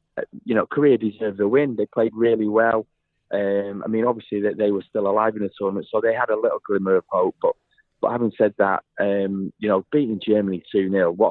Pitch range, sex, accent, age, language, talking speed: 100-115 Hz, male, British, 30-49, English, 230 wpm